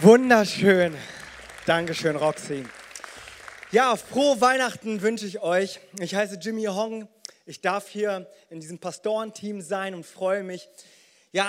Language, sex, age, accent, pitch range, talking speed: German, male, 30-49, German, 190-225 Hz, 125 wpm